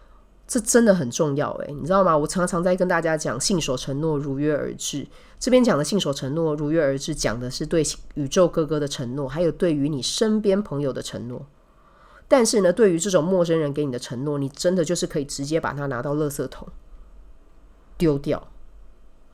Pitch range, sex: 145-205 Hz, female